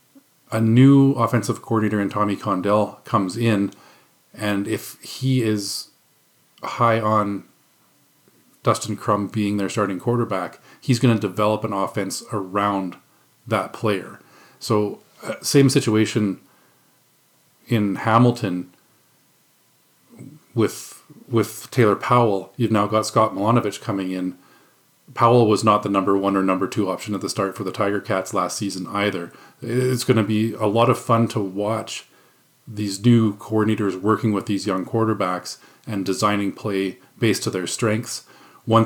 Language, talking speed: English, 145 wpm